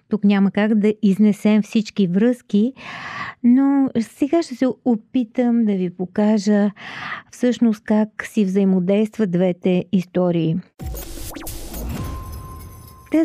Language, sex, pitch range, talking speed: Bulgarian, female, 190-240 Hz, 100 wpm